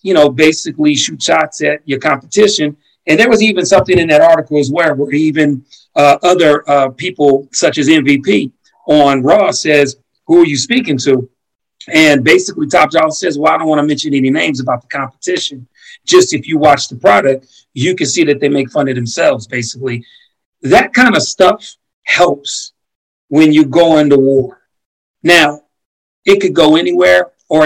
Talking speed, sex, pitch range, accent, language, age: 180 wpm, male, 140-170 Hz, American, English, 40-59